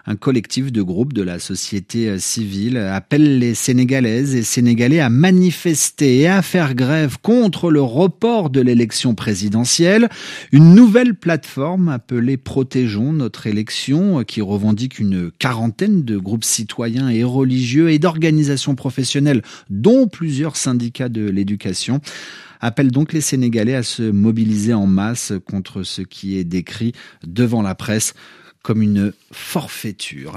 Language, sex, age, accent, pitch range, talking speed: French, male, 40-59, French, 110-150 Hz, 135 wpm